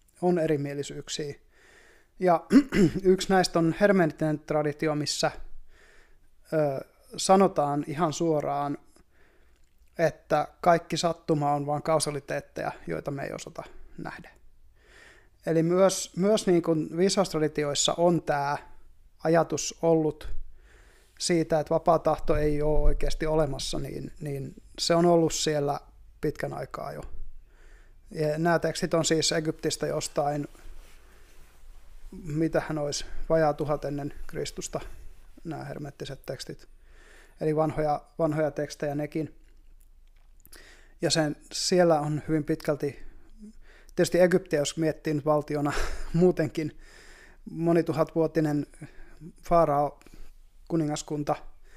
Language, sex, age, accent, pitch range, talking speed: Finnish, male, 20-39, native, 150-170 Hz, 100 wpm